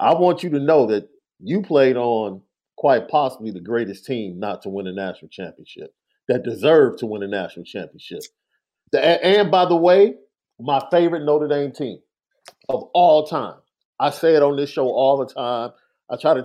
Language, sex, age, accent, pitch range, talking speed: English, male, 40-59, American, 120-155 Hz, 185 wpm